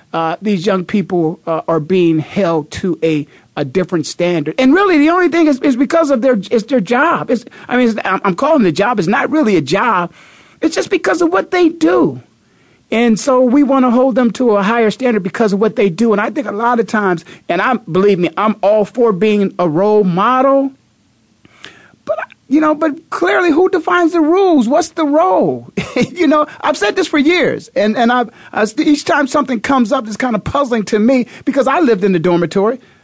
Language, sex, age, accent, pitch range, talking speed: English, male, 50-69, American, 210-295 Hz, 220 wpm